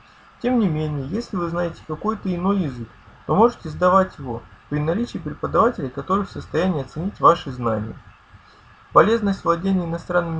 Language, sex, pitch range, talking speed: Russian, male, 140-195 Hz, 145 wpm